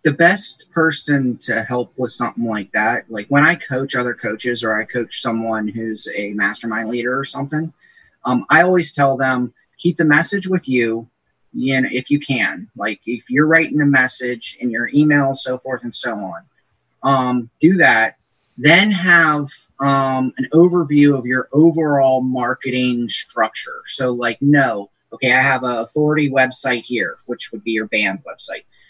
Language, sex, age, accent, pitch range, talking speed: English, male, 30-49, American, 120-145 Hz, 170 wpm